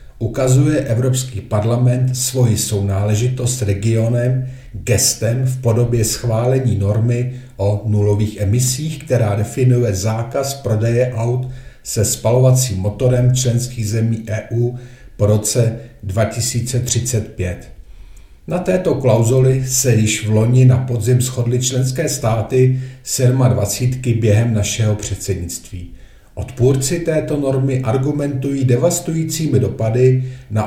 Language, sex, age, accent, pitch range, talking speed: Czech, male, 50-69, native, 110-130 Hz, 100 wpm